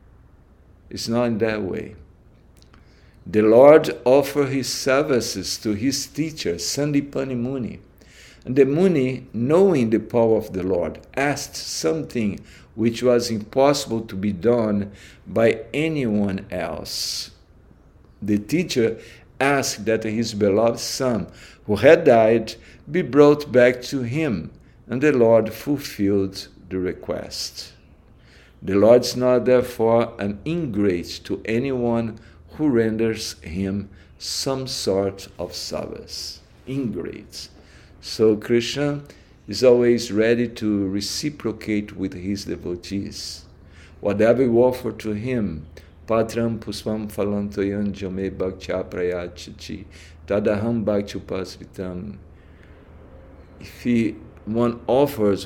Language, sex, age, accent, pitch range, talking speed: English, male, 50-69, Brazilian, 95-120 Hz, 100 wpm